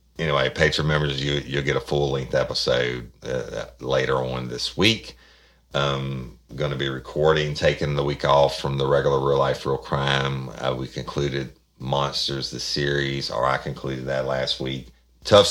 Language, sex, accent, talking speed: English, male, American, 165 wpm